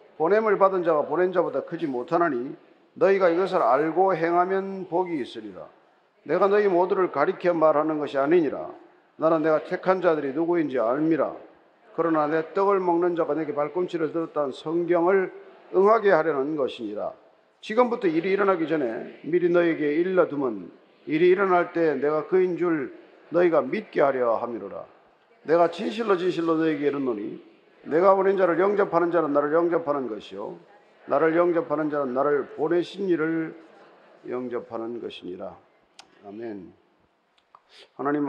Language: Korean